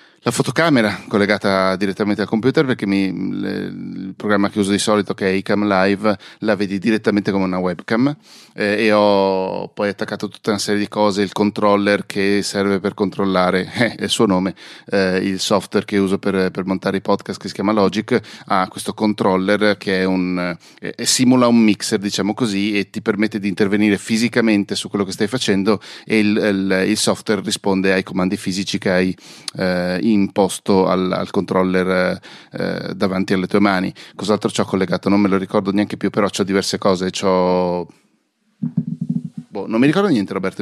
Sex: male